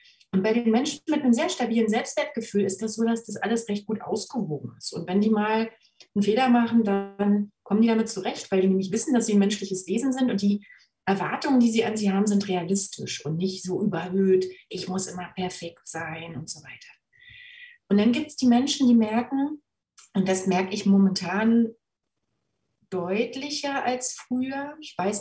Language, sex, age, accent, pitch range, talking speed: German, female, 30-49, German, 195-230 Hz, 195 wpm